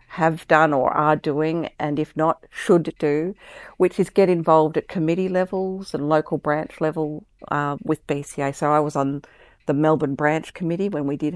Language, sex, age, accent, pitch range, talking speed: English, female, 50-69, Australian, 145-170 Hz, 185 wpm